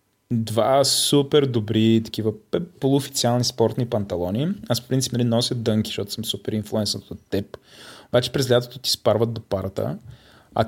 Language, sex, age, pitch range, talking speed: Bulgarian, male, 20-39, 115-145 Hz, 150 wpm